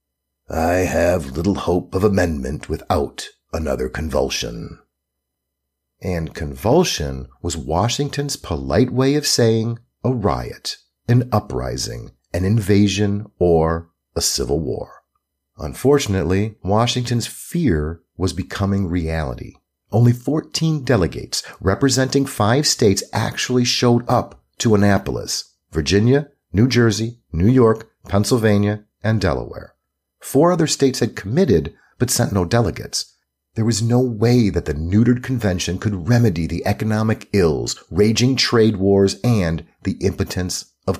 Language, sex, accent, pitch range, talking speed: English, male, American, 80-120 Hz, 120 wpm